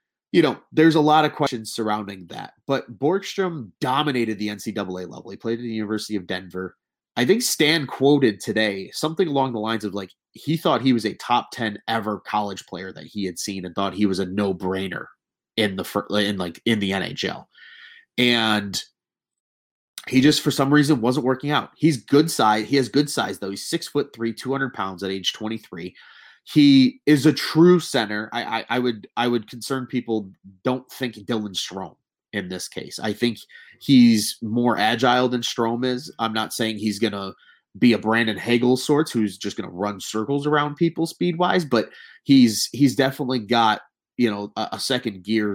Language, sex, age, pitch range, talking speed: English, male, 30-49, 105-140 Hz, 190 wpm